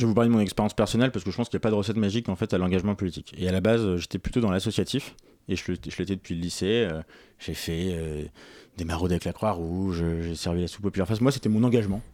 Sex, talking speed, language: male, 300 wpm, French